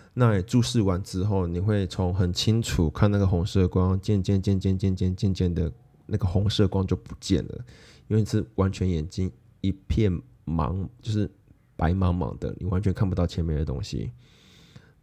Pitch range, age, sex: 90-110 Hz, 20-39, male